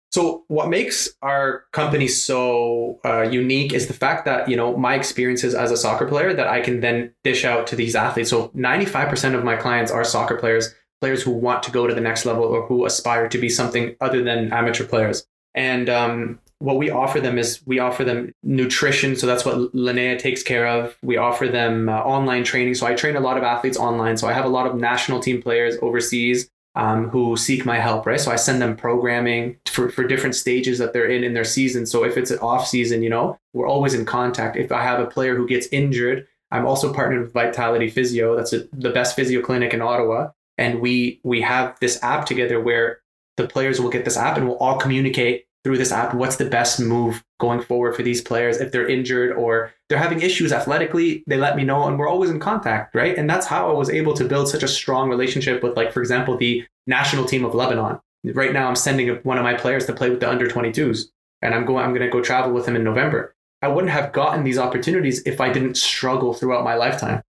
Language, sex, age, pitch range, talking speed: English, male, 20-39, 120-130 Hz, 230 wpm